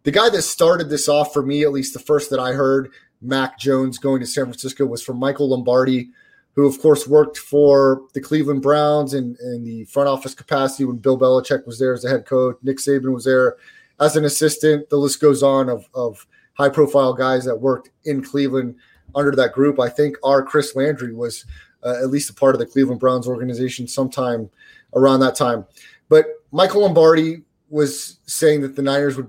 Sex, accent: male, American